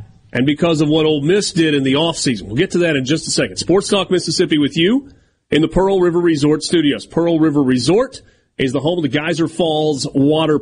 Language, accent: English, American